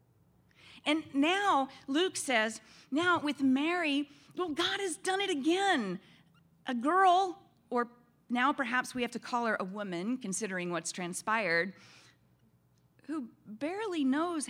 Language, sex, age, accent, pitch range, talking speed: English, female, 40-59, American, 205-300 Hz, 130 wpm